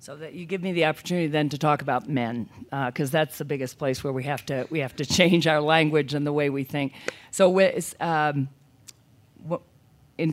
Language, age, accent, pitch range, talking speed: English, 40-59, American, 140-175 Hz, 220 wpm